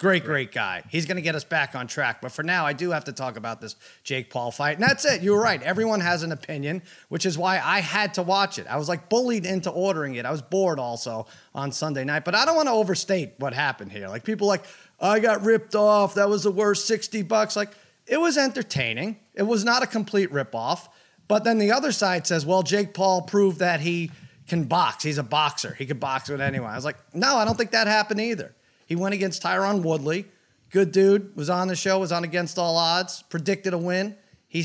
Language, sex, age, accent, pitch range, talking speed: English, male, 30-49, American, 160-205 Hz, 240 wpm